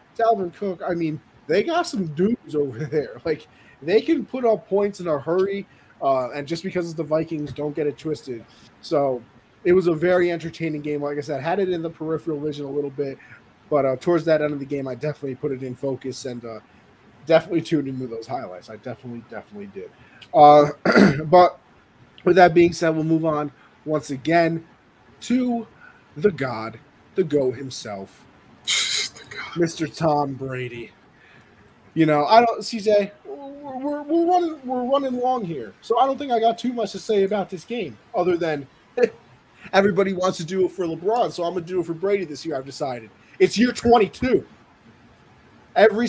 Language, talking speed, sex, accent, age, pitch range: English, 190 wpm, male, American, 20-39, 145-195 Hz